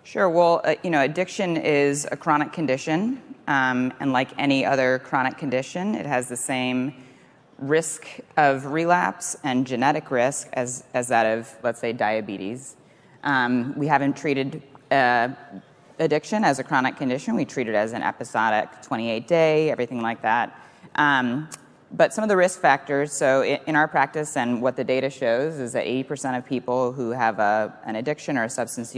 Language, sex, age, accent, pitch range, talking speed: English, female, 30-49, American, 120-150 Hz, 170 wpm